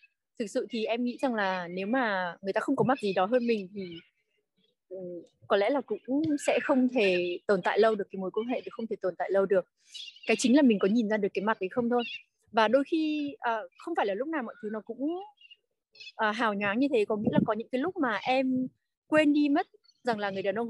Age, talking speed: 20-39, 260 wpm